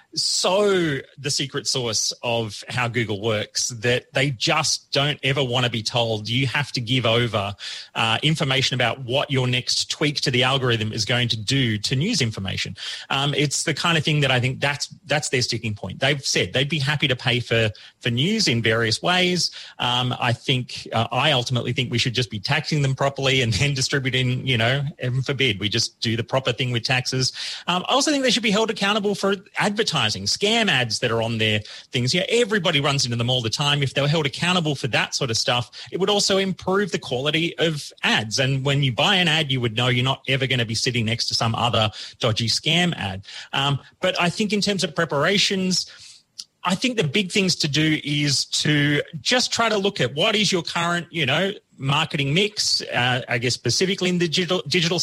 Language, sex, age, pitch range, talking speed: English, male, 30-49, 120-165 Hz, 220 wpm